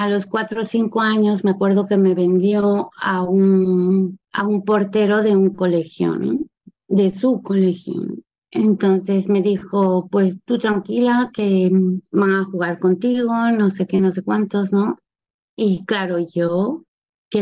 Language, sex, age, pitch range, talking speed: Spanish, female, 30-49, 190-215 Hz, 150 wpm